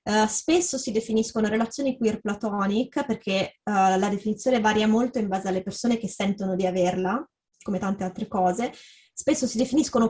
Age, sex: 20-39, female